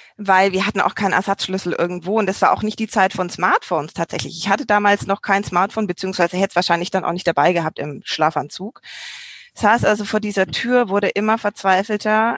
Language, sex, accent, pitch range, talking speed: German, female, German, 190-225 Hz, 205 wpm